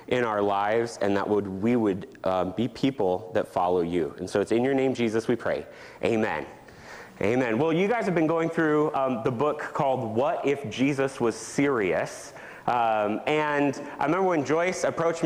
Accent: American